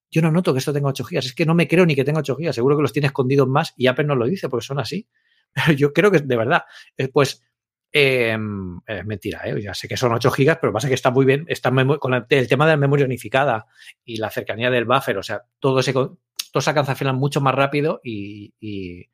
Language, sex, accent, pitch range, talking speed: Spanish, male, Spanish, 120-155 Hz, 265 wpm